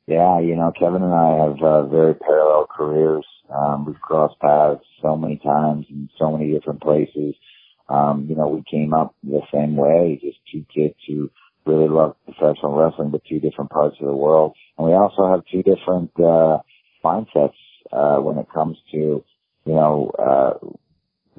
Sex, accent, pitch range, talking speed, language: male, American, 70-80 Hz, 175 wpm, English